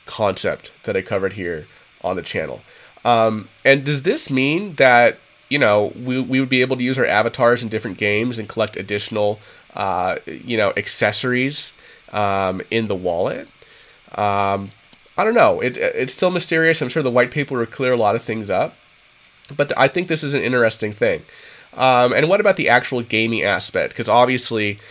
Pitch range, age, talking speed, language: 110-135 Hz, 30-49, 185 wpm, English